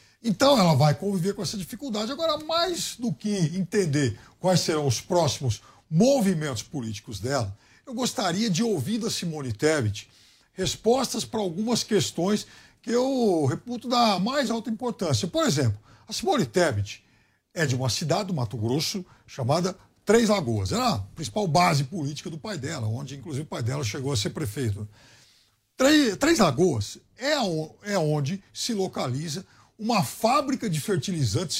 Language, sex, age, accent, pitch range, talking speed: Portuguese, male, 60-79, Brazilian, 140-225 Hz, 155 wpm